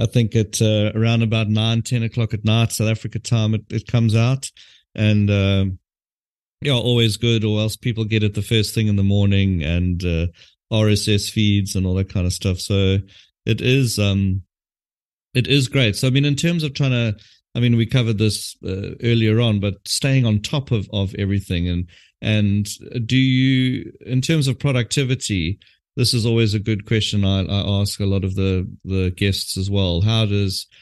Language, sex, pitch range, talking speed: English, male, 100-115 Hz, 200 wpm